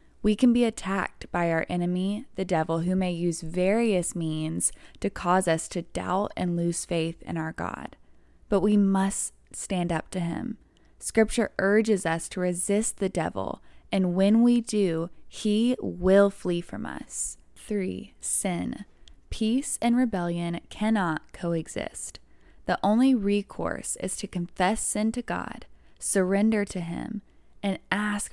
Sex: female